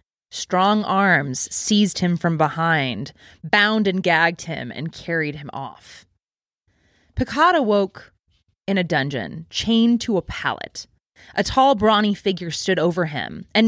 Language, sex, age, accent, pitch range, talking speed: English, female, 20-39, American, 150-210 Hz, 135 wpm